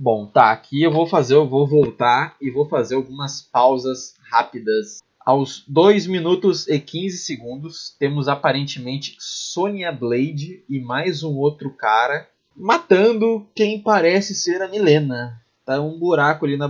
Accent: Brazilian